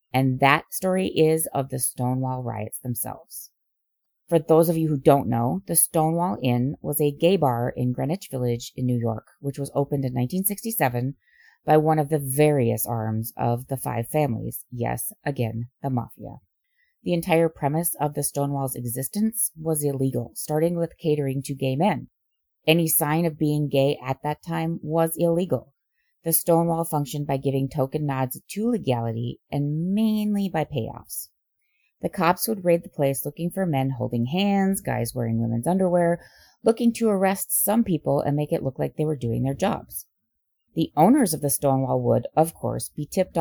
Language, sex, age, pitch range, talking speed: English, female, 30-49, 130-170 Hz, 175 wpm